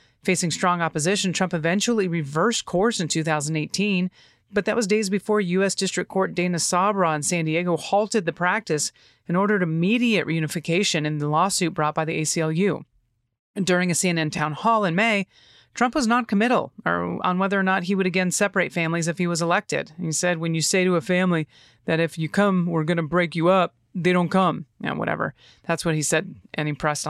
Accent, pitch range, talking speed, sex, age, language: American, 160-195 Hz, 200 wpm, female, 30-49, English